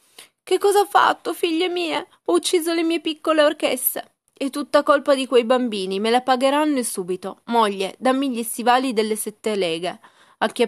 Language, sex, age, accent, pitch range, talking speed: Italian, female, 20-39, native, 180-235 Hz, 175 wpm